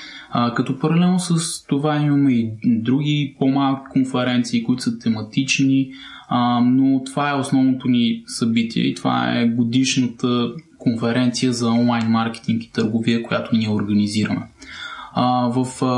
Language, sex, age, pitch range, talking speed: Bulgarian, male, 20-39, 120-140 Hz, 120 wpm